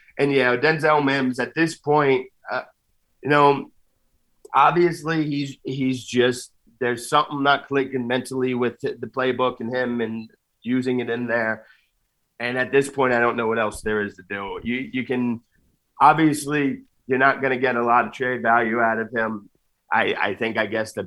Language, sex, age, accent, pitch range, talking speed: English, male, 30-49, American, 115-140 Hz, 200 wpm